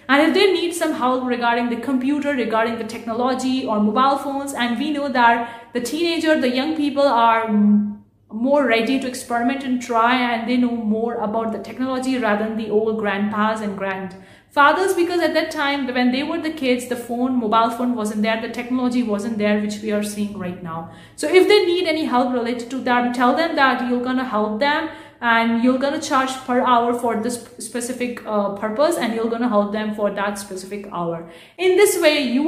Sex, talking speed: female, 205 wpm